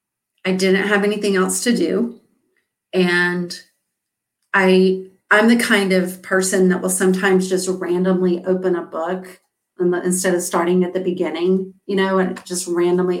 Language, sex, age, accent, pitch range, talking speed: English, female, 40-59, American, 180-195 Hz, 155 wpm